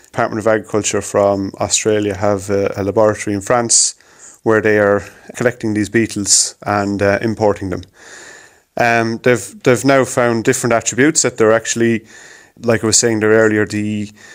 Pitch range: 105-115 Hz